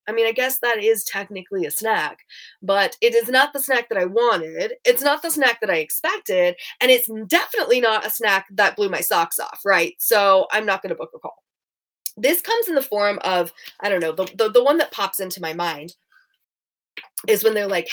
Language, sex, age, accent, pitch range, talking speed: English, female, 20-39, American, 185-305 Hz, 225 wpm